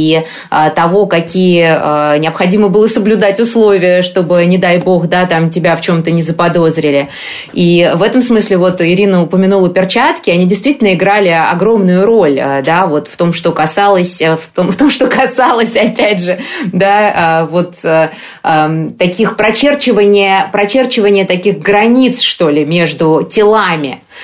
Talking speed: 140 wpm